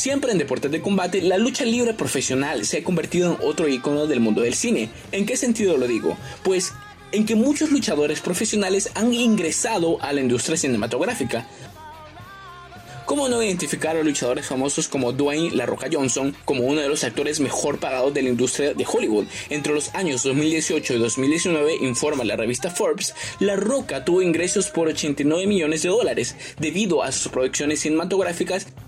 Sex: male